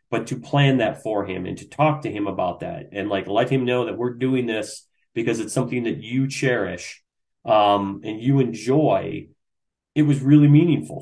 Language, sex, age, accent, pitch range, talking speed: English, male, 30-49, American, 110-140 Hz, 195 wpm